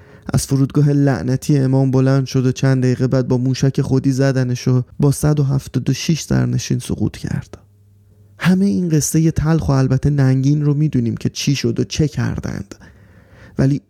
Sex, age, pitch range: male, 30-49, 125-160 Hz